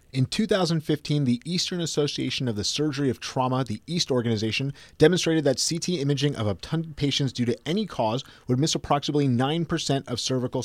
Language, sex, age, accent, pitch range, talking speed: English, male, 30-49, American, 125-155 Hz, 170 wpm